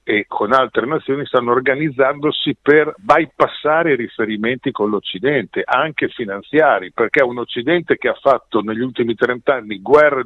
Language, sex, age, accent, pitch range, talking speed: Italian, male, 50-69, native, 120-175 Hz, 145 wpm